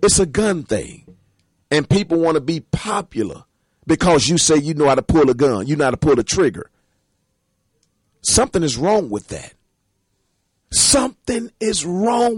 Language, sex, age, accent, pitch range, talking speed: English, male, 40-59, American, 155-250 Hz, 170 wpm